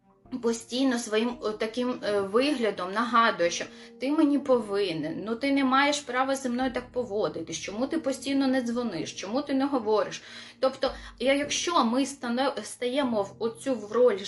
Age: 20-39